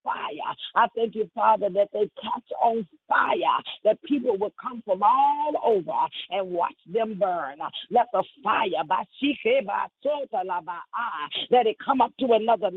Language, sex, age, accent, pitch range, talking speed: English, female, 40-59, American, 220-290 Hz, 145 wpm